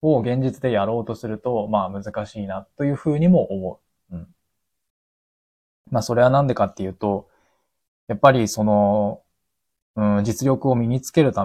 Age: 20-39